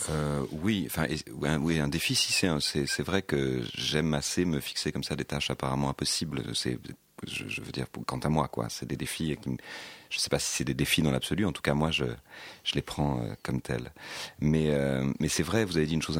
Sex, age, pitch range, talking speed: male, 40-59, 65-80 Hz, 255 wpm